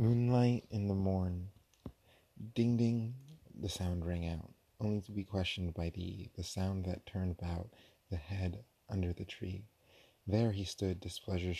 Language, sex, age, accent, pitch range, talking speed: English, male, 30-49, American, 85-95 Hz, 155 wpm